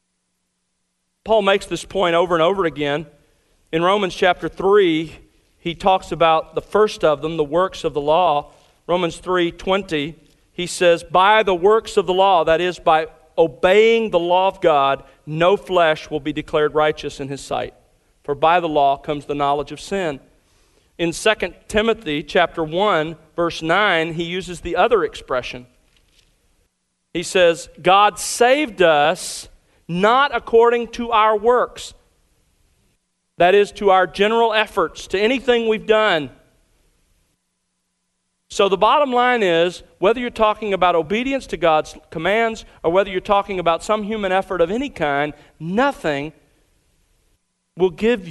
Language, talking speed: English, 150 wpm